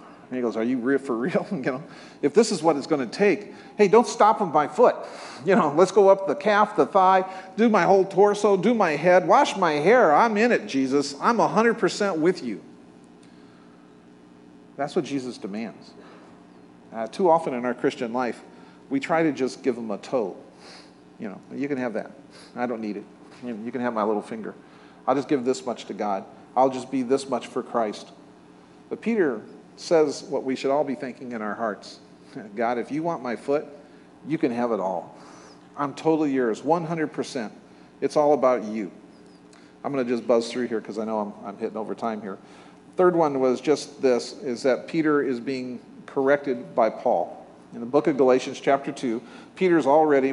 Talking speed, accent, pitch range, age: 200 wpm, American, 115-160 Hz, 40-59